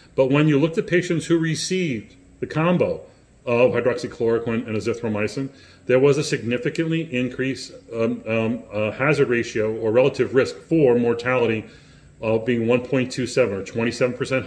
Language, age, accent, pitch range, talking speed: English, 40-59, American, 125-155 Hz, 145 wpm